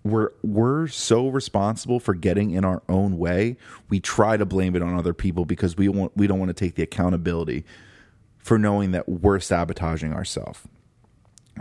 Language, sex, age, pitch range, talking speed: English, male, 30-49, 90-110 Hz, 170 wpm